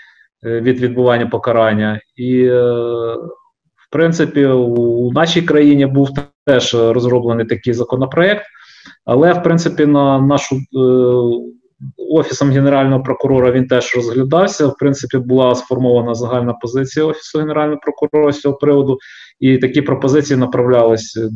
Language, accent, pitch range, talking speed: Ukrainian, native, 120-145 Hz, 125 wpm